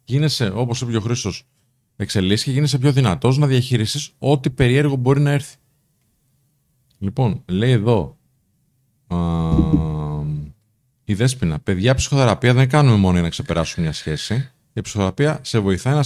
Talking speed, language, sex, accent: 140 wpm, Greek, male, native